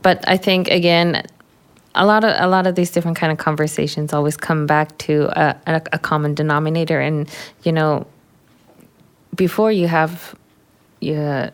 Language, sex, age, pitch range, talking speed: English, female, 20-39, 150-165 Hz, 160 wpm